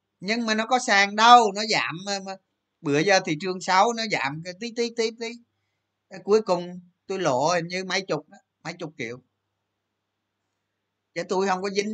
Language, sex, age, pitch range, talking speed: Vietnamese, male, 20-39, 145-195 Hz, 170 wpm